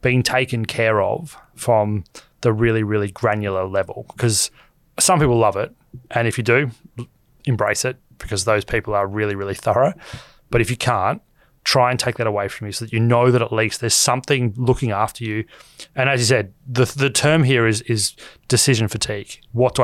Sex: male